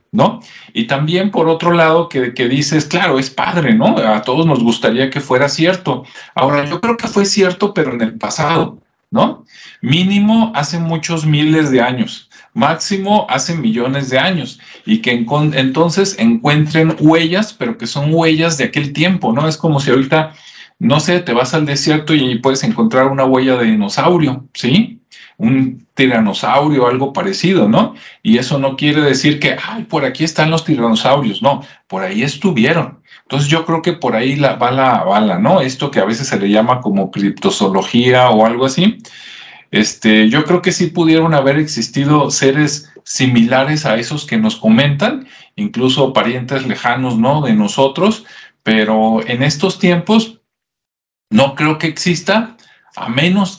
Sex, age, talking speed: male, 50-69, 165 wpm